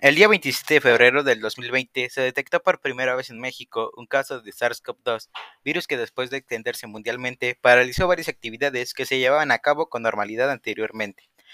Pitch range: 130-190 Hz